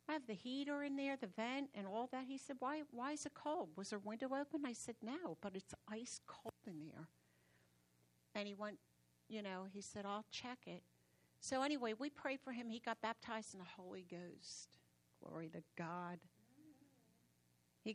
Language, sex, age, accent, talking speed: English, female, 60-79, American, 195 wpm